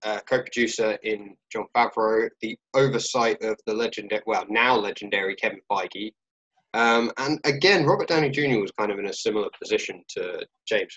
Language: English